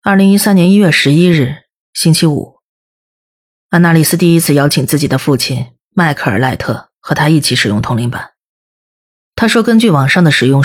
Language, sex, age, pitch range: Chinese, female, 30-49, 130-175 Hz